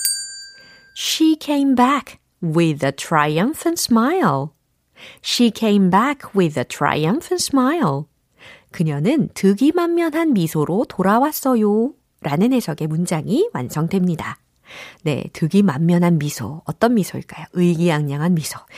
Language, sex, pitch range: Korean, female, 160-245 Hz